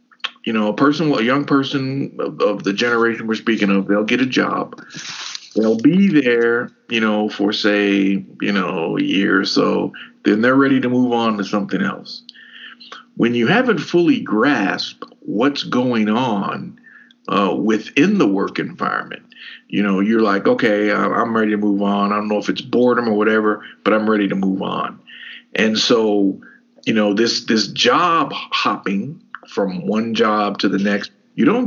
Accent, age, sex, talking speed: American, 50-69, male, 175 wpm